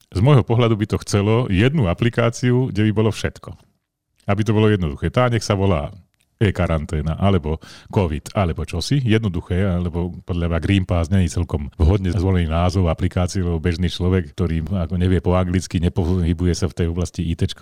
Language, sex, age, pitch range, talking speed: Slovak, male, 40-59, 85-100 Hz, 170 wpm